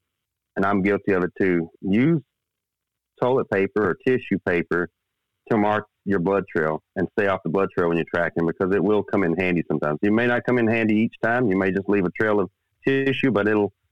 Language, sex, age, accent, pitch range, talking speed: English, male, 40-59, American, 90-115 Hz, 220 wpm